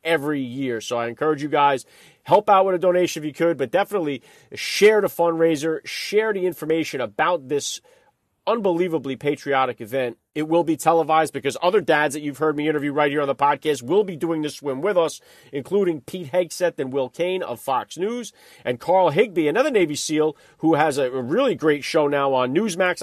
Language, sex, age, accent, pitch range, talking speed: English, male, 40-59, American, 130-160 Hz, 200 wpm